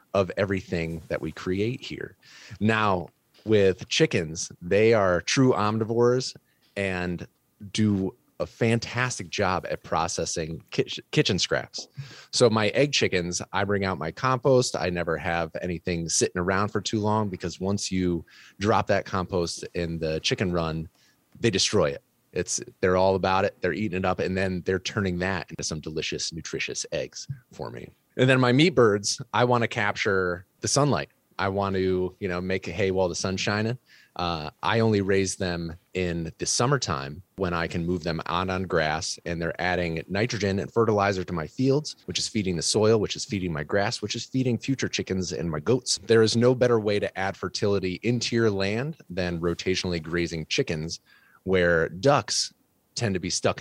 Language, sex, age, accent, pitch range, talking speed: English, male, 30-49, American, 85-110 Hz, 180 wpm